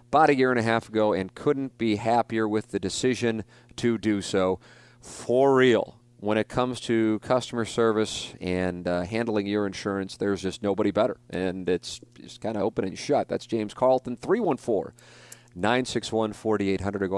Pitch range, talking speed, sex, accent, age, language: 100-120 Hz, 170 wpm, male, American, 40-59, English